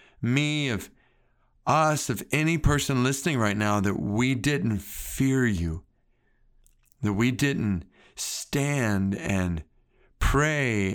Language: English